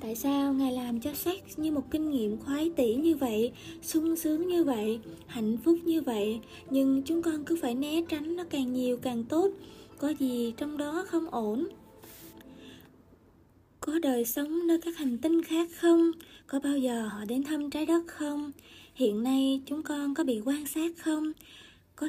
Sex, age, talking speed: female, 20-39, 185 wpm